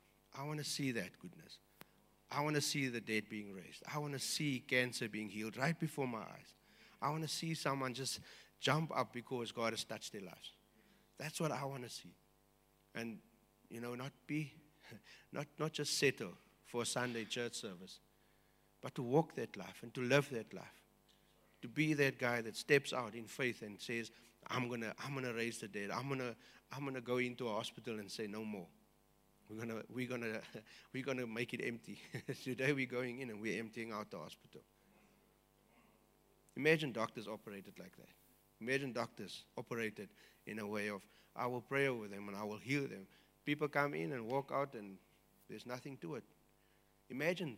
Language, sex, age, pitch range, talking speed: English, male, 60-79, 110-140 Hz, 195 wpm